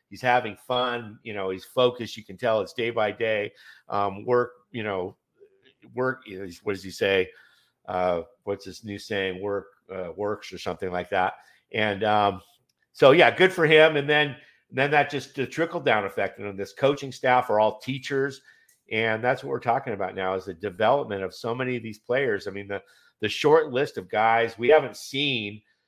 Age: 50-69